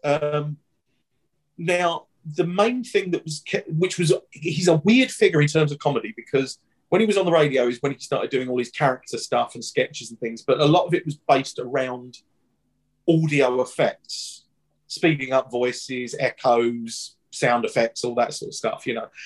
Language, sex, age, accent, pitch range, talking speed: English, male, 30-49, British, 125-155 Hz, 185 wpm